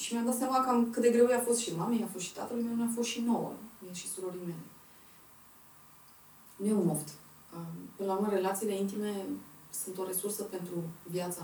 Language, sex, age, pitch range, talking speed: Romanian, female, 20-39, 175-225 Hz, 190 wpm